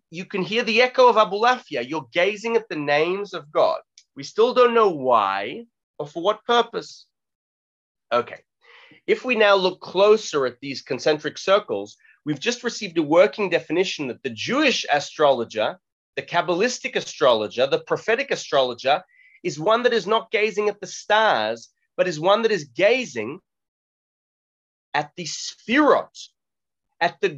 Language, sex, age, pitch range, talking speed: English, male, 30-49, 175-240 Hz, 155 wpm